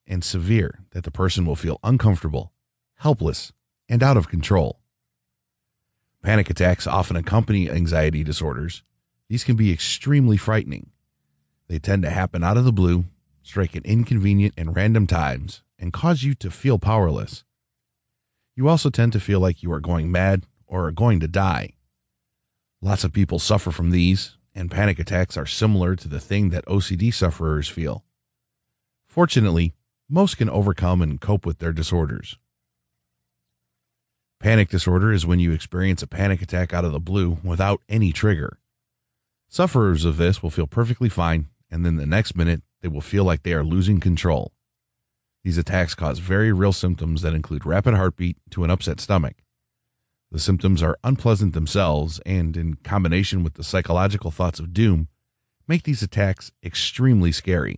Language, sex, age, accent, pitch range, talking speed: English, male, 30-49, American, 80-100 Hz, 160 wpm